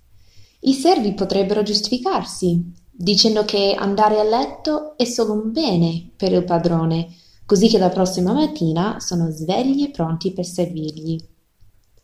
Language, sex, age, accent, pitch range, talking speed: Italian, female, 20-39, native, 155-200 Hz, 135 wpm